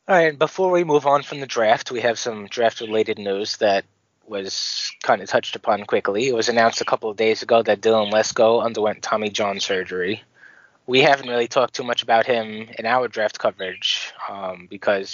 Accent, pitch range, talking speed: American, 110-140 Hz, 200 wpm